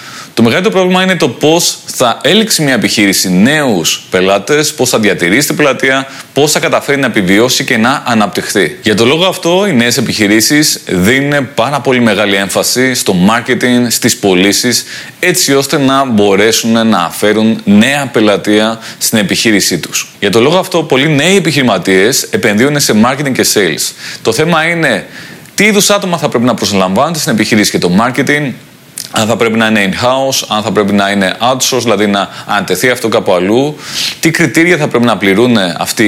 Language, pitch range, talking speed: Greek, 110-150 Hz, 175 wpm